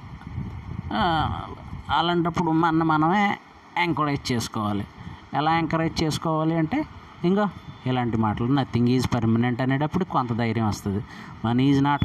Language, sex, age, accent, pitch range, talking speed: Telugu, male, 20-39, native, 115-150 Hz, 110 wpm